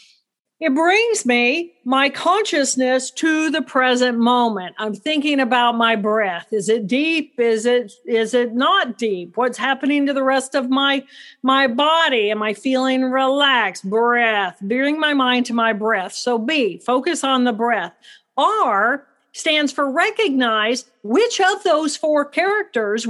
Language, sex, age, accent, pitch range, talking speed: English, female, 50-69, American, 245-320 Hz, 150 wpm